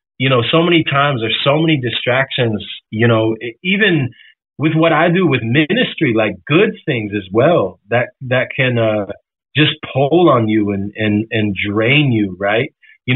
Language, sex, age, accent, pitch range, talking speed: English, male, 30-49, American, 110-155 Hz, 175 wpm